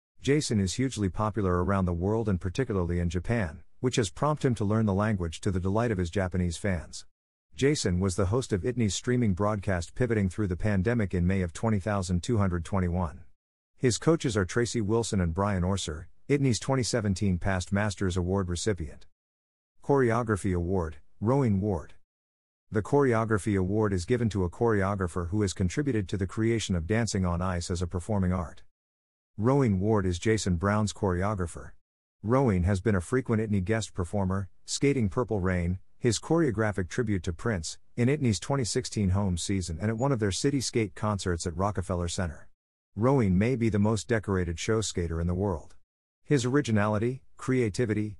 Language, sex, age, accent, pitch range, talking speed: English, male, 50-69, American, 90-115 Hz, 165 wpm